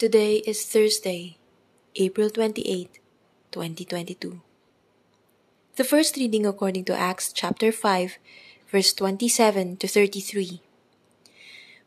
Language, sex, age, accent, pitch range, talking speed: English, female, 20-39, Filipino, 180-225 Hz, 90 wpm